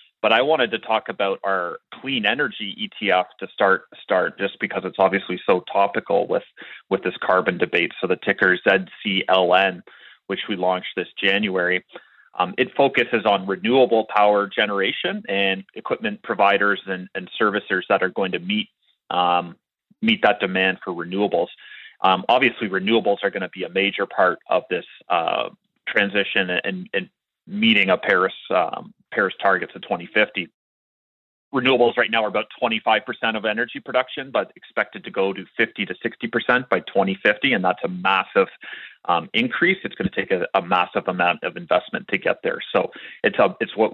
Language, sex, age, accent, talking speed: English, male, 30-49, American, 170 wpm